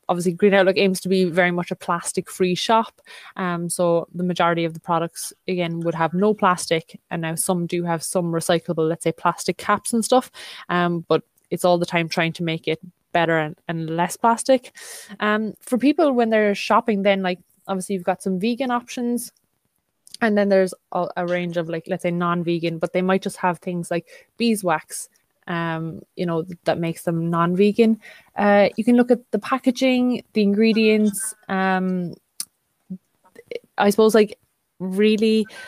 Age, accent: 20-39, Irish